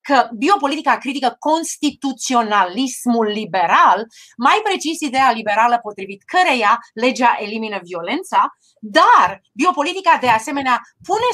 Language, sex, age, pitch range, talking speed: Romanian, female, 30-49, 215-280 Hz, 100 wpm